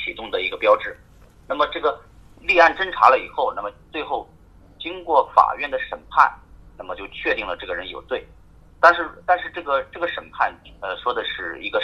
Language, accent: Chinese, native